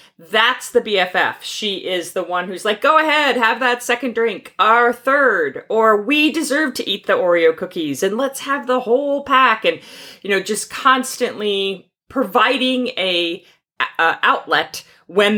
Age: 40-59